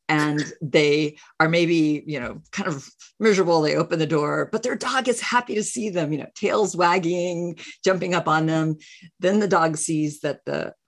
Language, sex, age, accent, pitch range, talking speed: English, female, 50-69, American, 150-200 Hz, 195 wpm